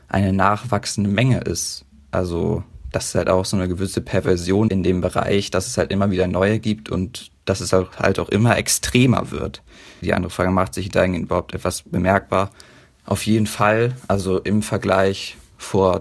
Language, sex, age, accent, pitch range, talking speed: German, male, 20-39, German, 90-100 Hz, 175 wpm